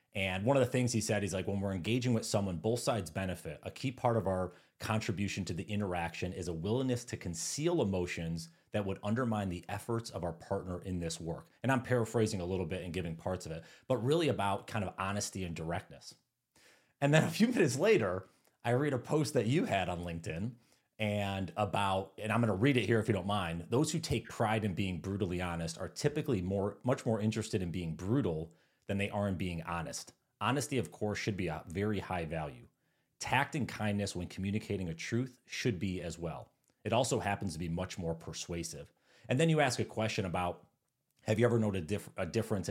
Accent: American